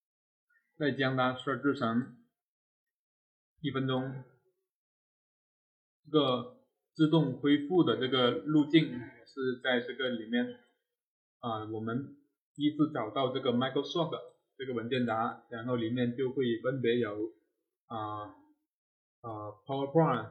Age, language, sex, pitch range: 20-39, Chinese, male, 120-160 Hz